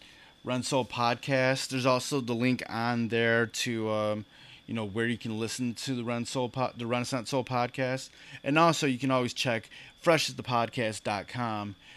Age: 20-39